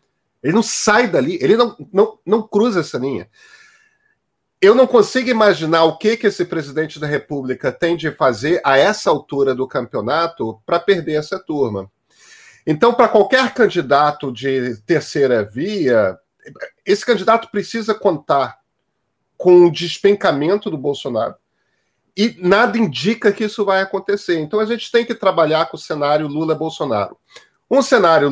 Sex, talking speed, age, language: male, 145 wpm, 40-59, Portuguese